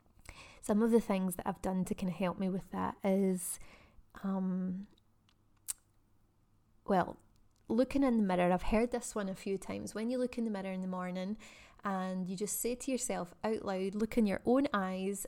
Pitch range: 180-220 Hz